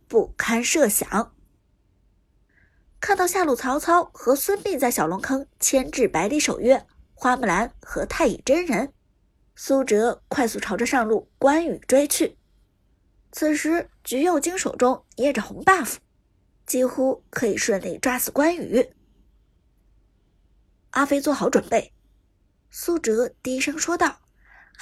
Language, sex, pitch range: Chinese, female, 240-350 Hz